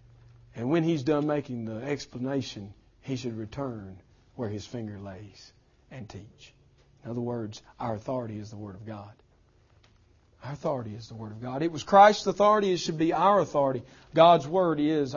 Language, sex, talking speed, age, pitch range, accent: English, male, 180 wpm, 40-59, 120-190 Hz, American